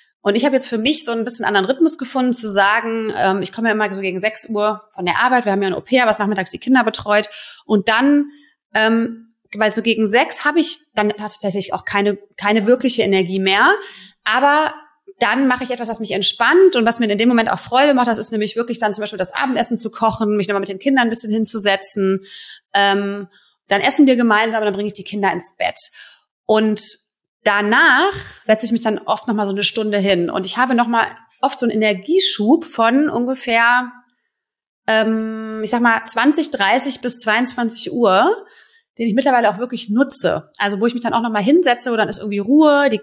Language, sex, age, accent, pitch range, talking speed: German, female, 30-49, German, 210-255 Hz, 215 wpm